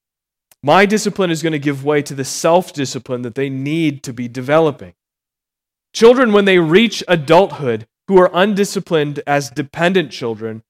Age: 30-49